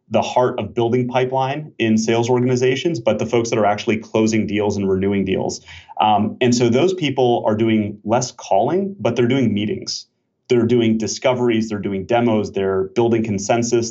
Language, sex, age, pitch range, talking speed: English, male, 30-49, 105-125 Hz, 175 wpm